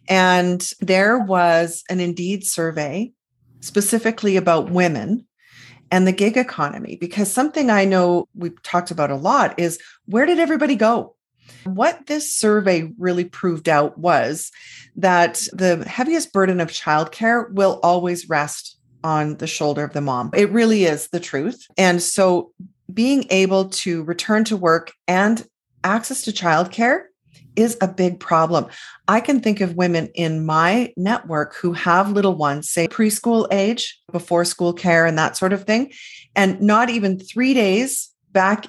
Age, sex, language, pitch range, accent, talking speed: 40-59, female, English, 170-220 Hz, American, 155 wpm